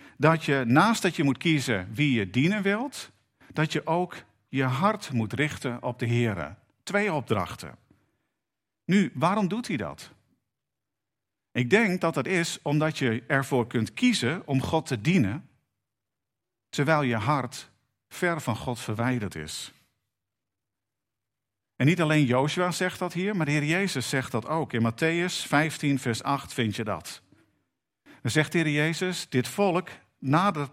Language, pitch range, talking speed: Dutch, 115-160 Hz, 155 wpm